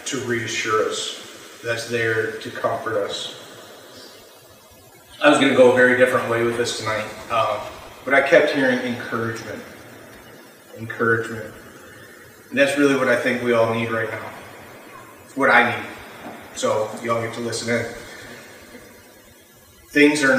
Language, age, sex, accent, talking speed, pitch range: English, 30-49, male, American, 145 wpm, 115-125 Hz